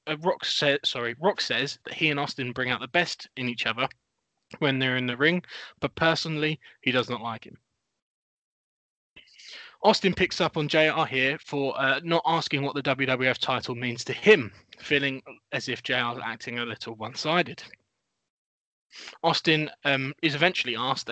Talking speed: 160 wpm